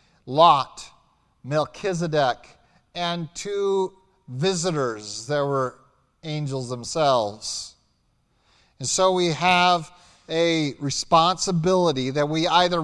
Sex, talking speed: male, 85 wpm